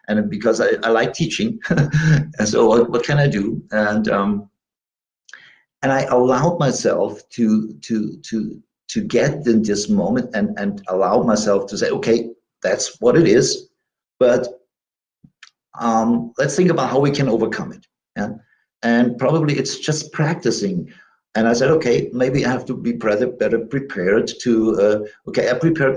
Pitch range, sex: 110-155 Hz, male